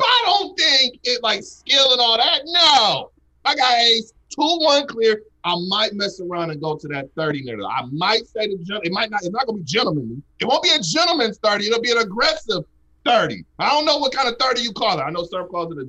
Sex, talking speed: male, 250 wpm